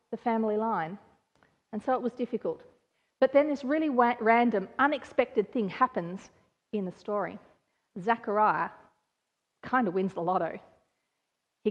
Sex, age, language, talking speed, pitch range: female, 40-59, English, 135 wpm, 205-260 Hz